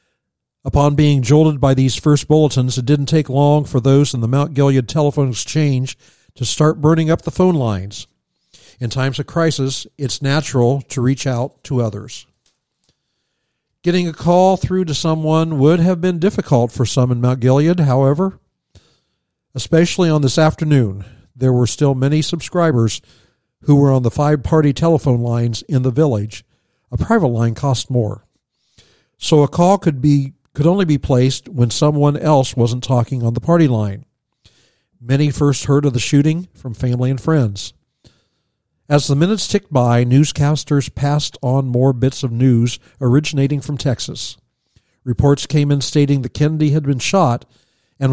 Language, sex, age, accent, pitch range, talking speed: English, male, 60-79, American, 125-150 Hz, 160 wpm